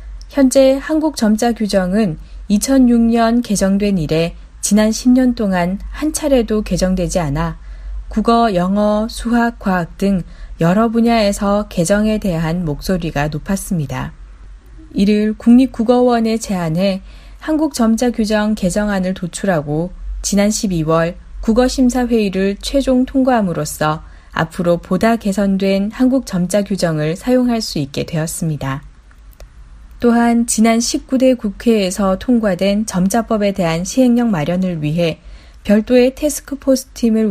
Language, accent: Korean, native